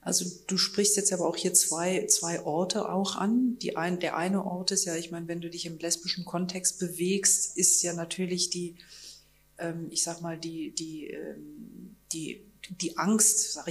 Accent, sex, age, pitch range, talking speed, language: German, female, 40-59, 165-190 Hz, 165 wpm, German